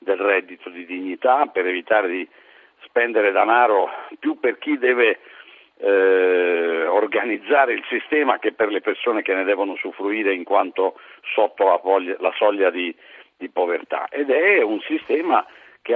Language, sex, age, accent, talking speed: Italian, male, 60-79, native, 150 wpm